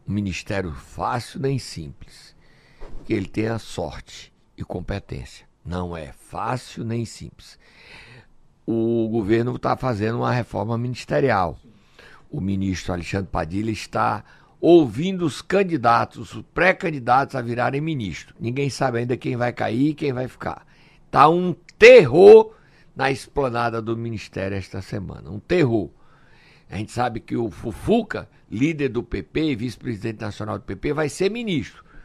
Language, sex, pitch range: Portuguese, male, 110-150 Hz